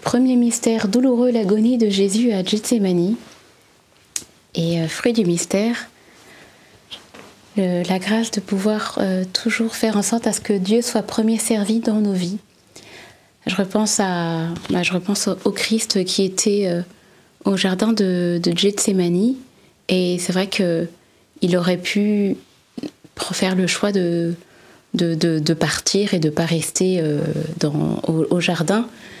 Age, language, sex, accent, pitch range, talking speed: 30-49, French, female, French, 180-215 Hz, 150 wpm